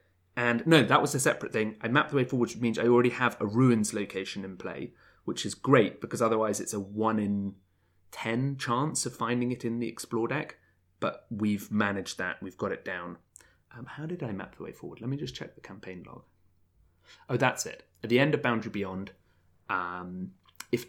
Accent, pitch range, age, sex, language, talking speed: British, 95-130 Hz, 30-49, male, English, 215 wpm